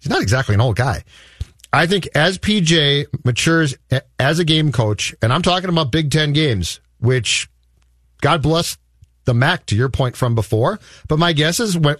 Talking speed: 185 wpm